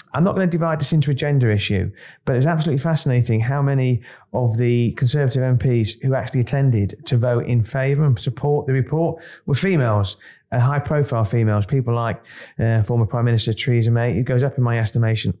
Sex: male